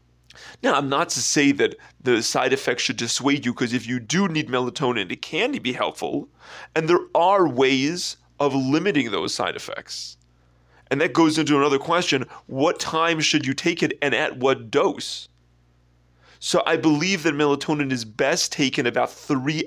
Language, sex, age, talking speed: English, male, 30-49, 175 wpm